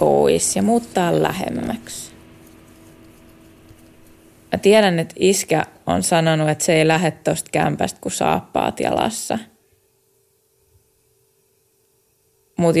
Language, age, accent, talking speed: Finnish, 20-39, native, 90 wpm